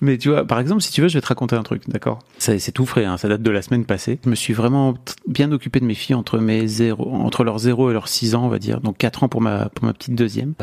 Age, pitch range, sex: 30-49, 105-130 Hz, male